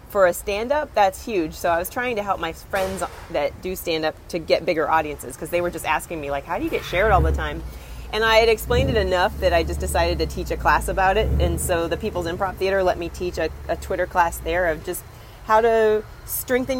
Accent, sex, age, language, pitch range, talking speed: American, female, 30-49, English, 165-215 Hz, 250 wpm